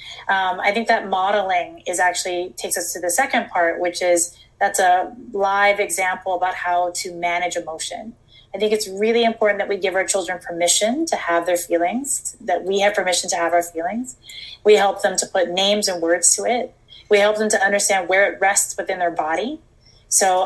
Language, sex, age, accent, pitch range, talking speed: English, female, 20-39, American, 175-205 Hz, 200 wpm